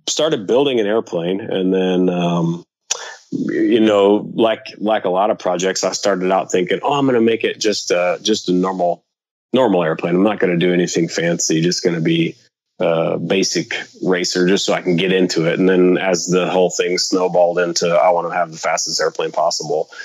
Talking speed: 210 wpm